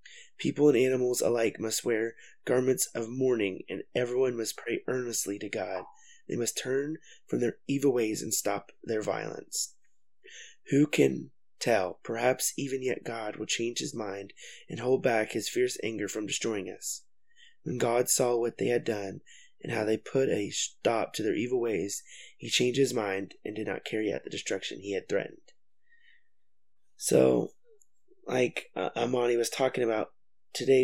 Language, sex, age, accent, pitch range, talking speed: English, male, 20-39, American, 115-145 Hz, 165 wpm